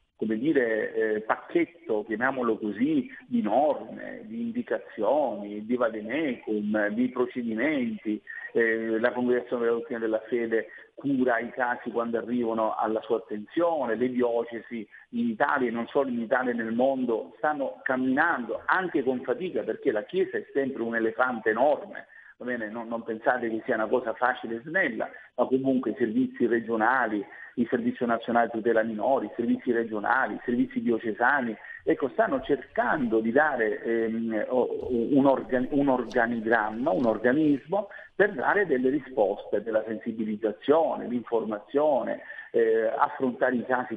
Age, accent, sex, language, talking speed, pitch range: 50-69, native, male, Italian, 140 wpm, 115-140 Hz